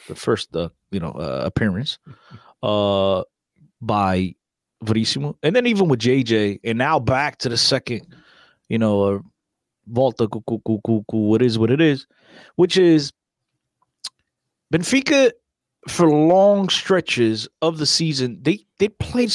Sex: male